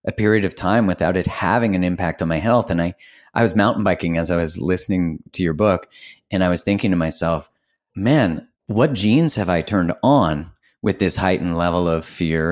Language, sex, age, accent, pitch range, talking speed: English, male, 30-49, American, 85-105 Hz, 210 wpm